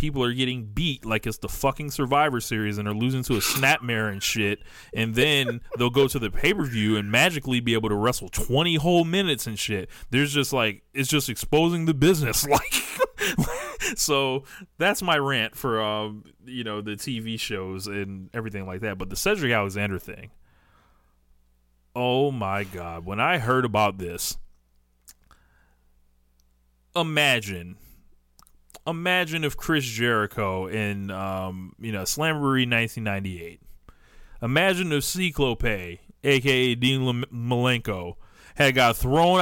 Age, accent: 20-39, American